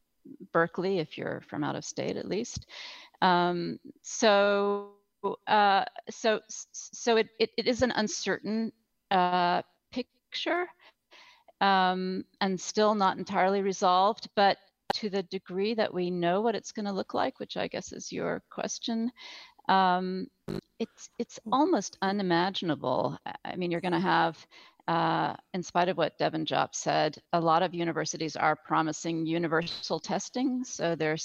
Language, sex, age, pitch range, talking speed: English, female, 40-59, 170-215 Hz, 150 wpm